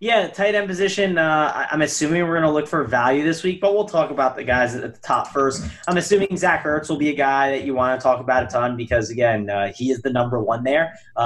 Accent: American